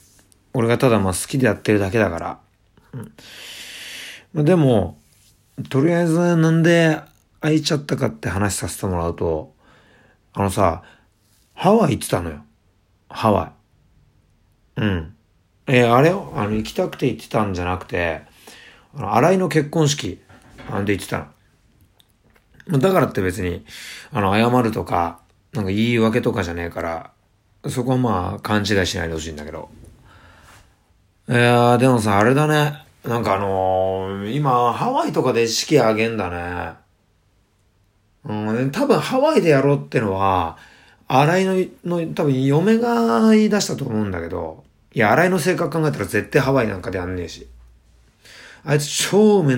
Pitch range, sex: 95-135 Hz, male